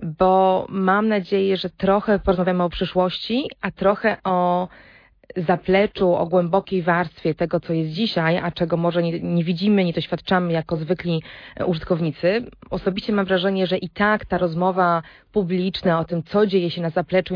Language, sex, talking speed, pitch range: Polish, female, 160 wpm, 170-200 Hz